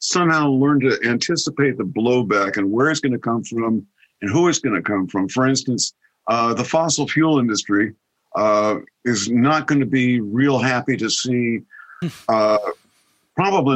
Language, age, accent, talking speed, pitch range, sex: English, 50-69, American, 170 wpm, 115-135 Hz, male